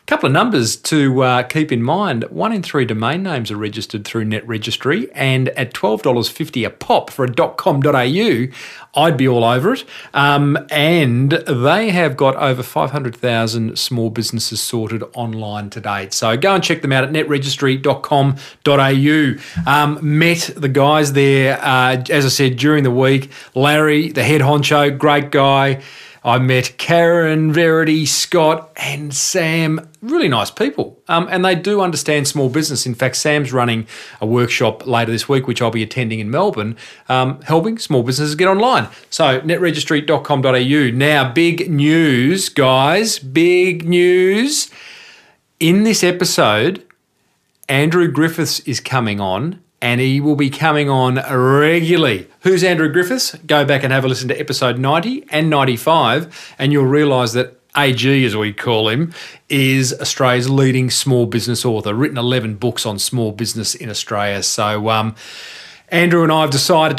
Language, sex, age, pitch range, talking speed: English, male, 40-59, 125-160 Hz, 155 wpm